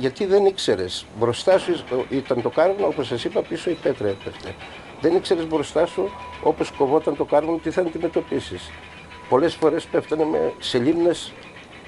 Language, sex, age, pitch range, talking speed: Greek, male, 60-79, 100-165 Hz, 155 wpm